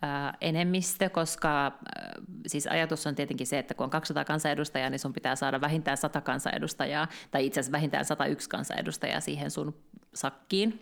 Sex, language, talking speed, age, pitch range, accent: female, Finnish, 150 wpm, 30-49, 145-180 Hz, native